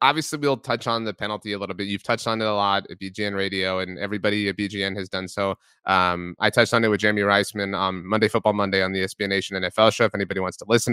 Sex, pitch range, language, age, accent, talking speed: male, 105-130 Hz, English, 30-49, American, 265 wpm